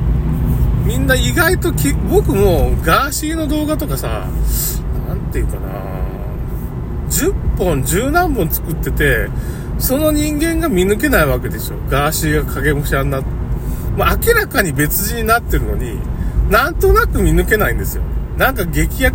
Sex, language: male, Japanese